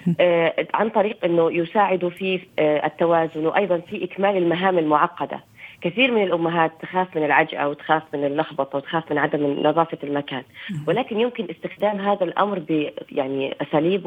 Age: 30-49